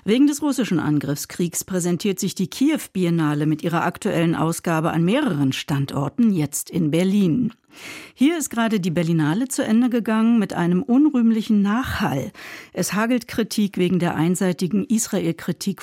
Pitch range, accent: 165-220 Hz, German